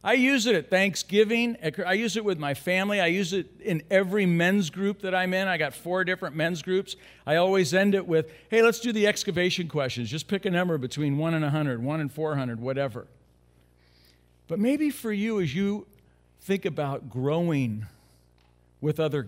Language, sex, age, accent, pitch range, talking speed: English, male, 50-69, American, 125-190 Hz, 195 wpm